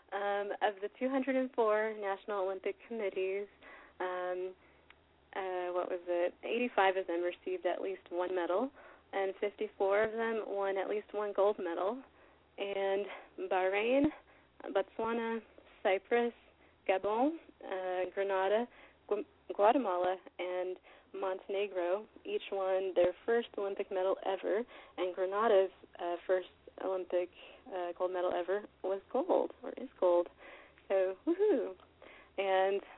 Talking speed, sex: 120 wpm, female